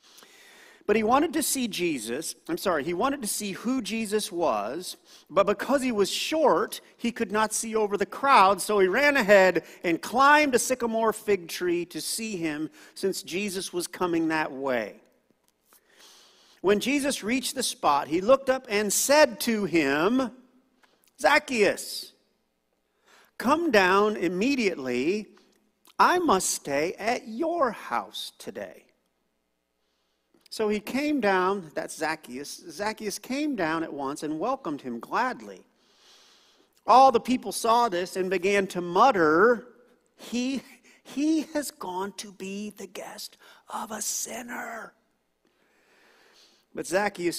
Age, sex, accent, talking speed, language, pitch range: 50-69, male, American, 135 wpm, English, 180-255 Hz